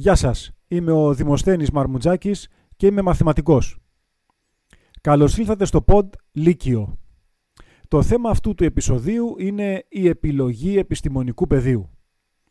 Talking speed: 115 wpm